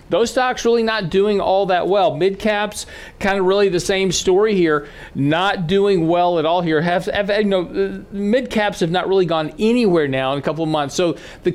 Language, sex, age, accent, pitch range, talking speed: English, male, 40-59, American, 155-195 Hz, 210 wpm